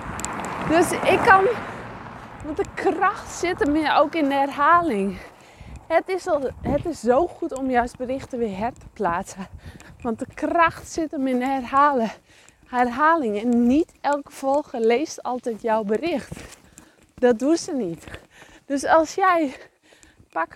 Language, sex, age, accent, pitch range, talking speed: English, female, 20-39, Dutch, 245-310 Hz, 145 wpm